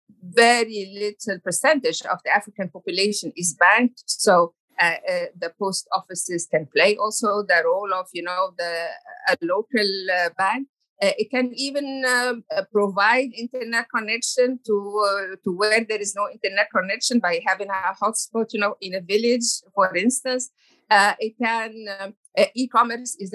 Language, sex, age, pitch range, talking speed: English, female, 50-69, 185-245 Hz, 160 wpm